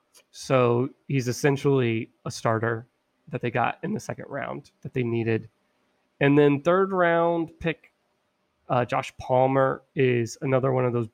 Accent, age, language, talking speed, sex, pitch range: American, 30-49, English, 150 wpm, male, 120-140 Hz